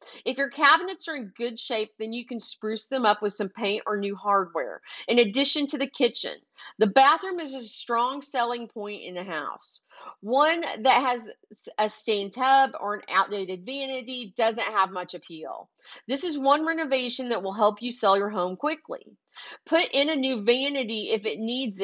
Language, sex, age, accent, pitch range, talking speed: English, female, 40-59, American, 205-265 Hz, 185 wpm